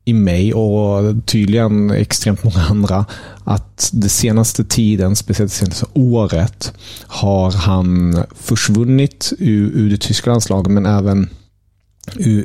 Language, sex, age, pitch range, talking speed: Swedish, male, 30-49, 95-115 Hz, 125 wpm